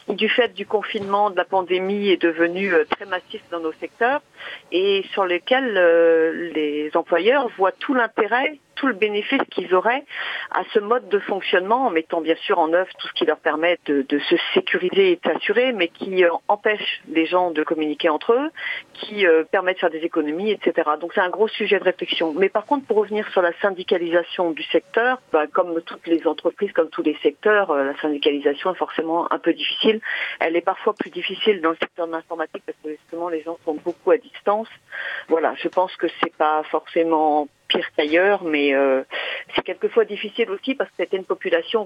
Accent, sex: French, female